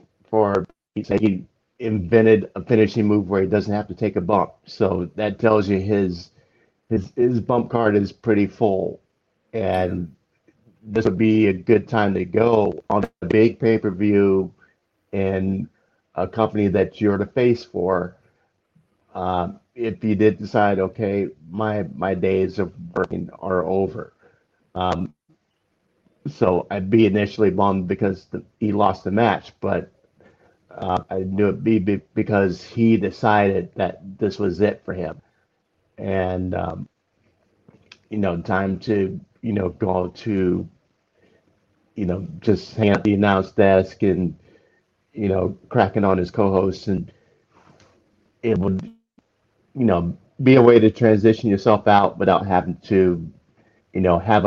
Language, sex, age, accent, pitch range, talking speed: English, male, 50-69, American, 95-110 Hz, 145 wpm